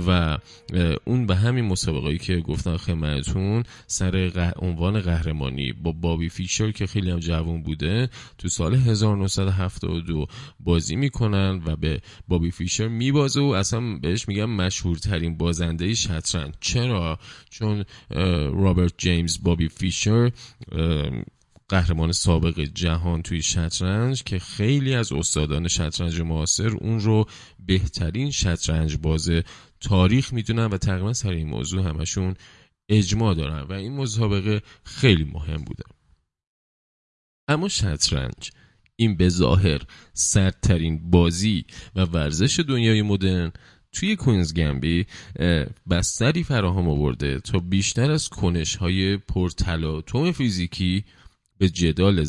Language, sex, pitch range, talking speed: Persian, male, 85-110 Hz, 115 wpm